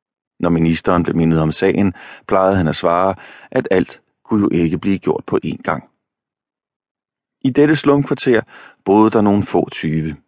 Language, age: Danish, 30-49